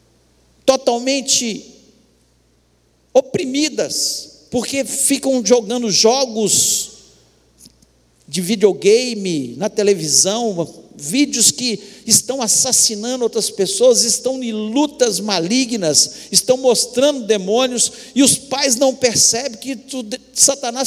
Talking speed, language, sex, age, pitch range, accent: 85 wpm, Portuguese, male, 60-79, 205-250 Hz, Brazilian